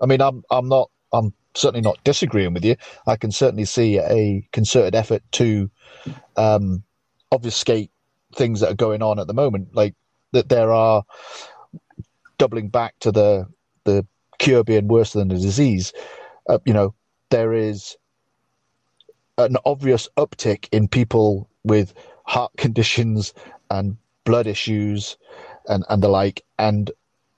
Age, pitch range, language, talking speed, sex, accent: 40-59, 105-130 Hz, English, 140 wpm, male, British